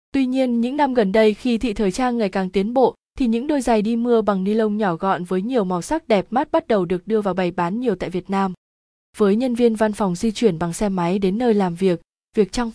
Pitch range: 190-235 Hz